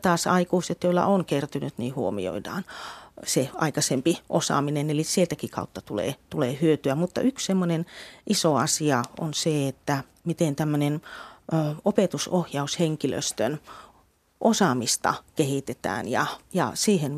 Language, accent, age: Finnish, native, 30-49